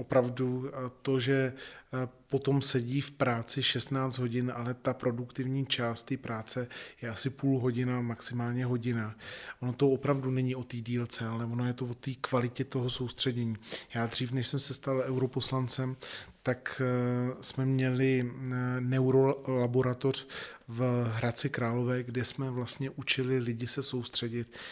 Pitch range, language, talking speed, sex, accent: 120-135 Hz, Czech, 140 wpm, male, native